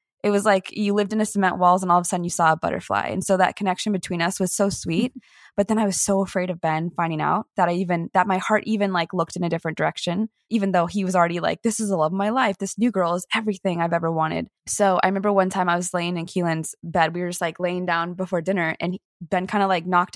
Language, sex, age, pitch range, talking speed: English, female, 20-39, 175-205 Hz, 290 wpm